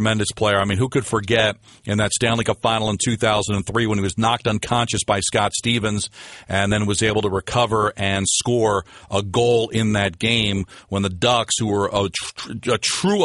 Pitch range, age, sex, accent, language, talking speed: 100-120 Hz, 40-59, male, American, English, 195 wpm